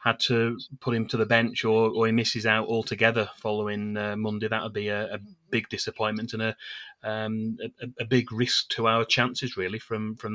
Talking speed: 210 wpm